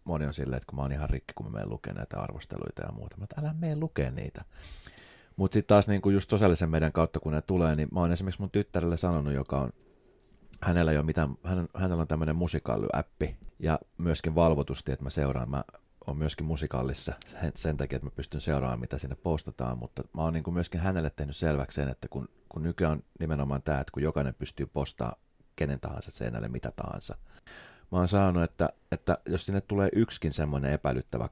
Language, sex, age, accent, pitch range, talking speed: Finnish, male, 30-49, native, 70-90 Hz, 195 wpm